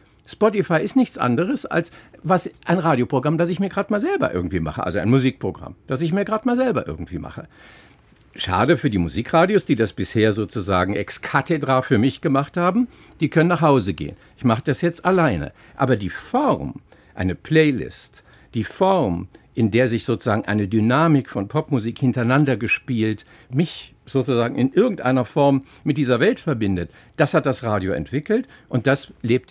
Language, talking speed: German, 175 wpm